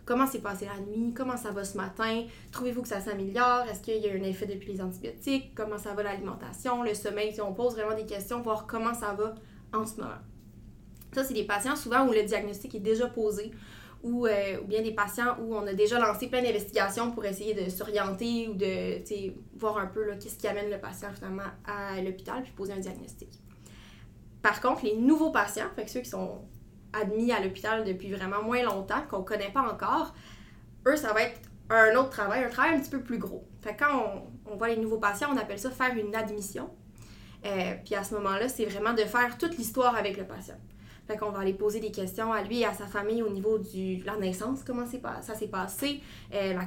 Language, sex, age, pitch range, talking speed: French, female, 20-39, 195-230 Hz, 220 wpm